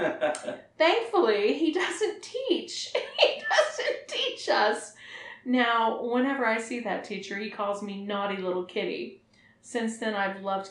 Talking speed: 135 wpm